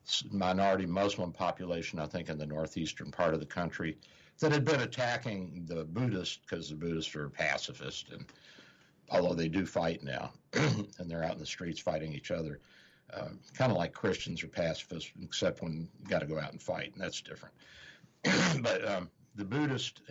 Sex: male